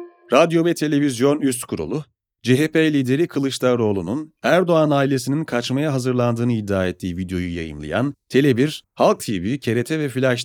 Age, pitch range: 40-59, 115-150 Hz